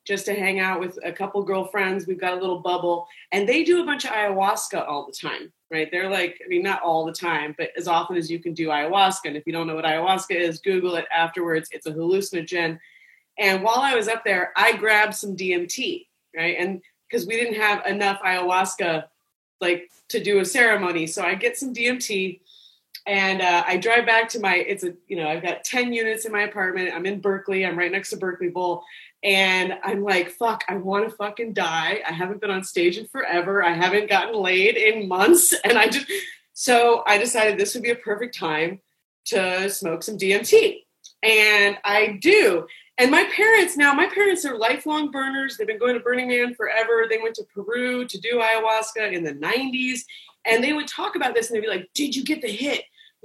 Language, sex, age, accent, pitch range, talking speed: English, female, 30-49, American, 185-250 Hz, 215 wpm